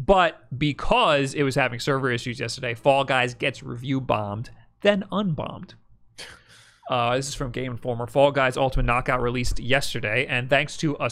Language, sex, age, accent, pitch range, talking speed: English, male, 30-49, American, 125-155 Hz, 160 wpm